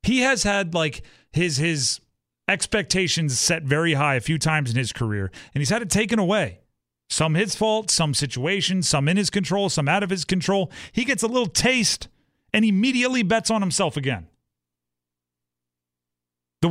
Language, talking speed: English, 170 wpm